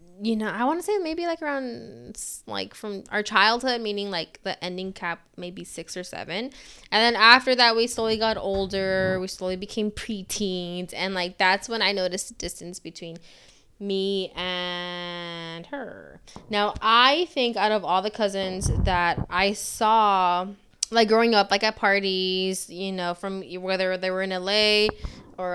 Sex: female